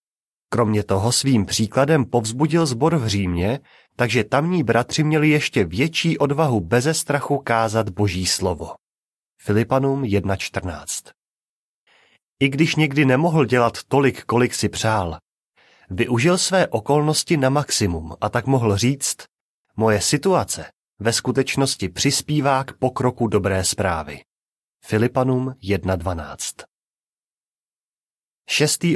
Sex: male